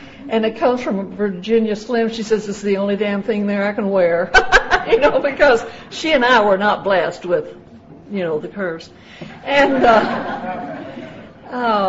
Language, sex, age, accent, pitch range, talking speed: English, female, 60-79, American, 195-245 Hz, 165 wpm